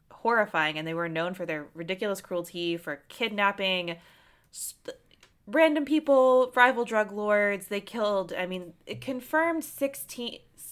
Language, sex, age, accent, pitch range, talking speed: English, female, 20-39, American, 170-230 Hz, 135 wpm